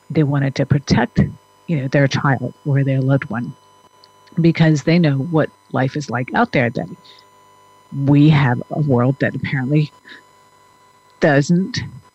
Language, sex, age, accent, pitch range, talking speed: English, female, 50-69, American, 135-170 Hz, 145 wpm